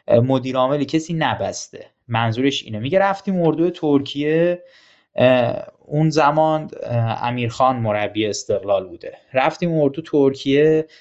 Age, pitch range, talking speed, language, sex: 20-39, 115-155 Hz, 105 wpm, Persian, male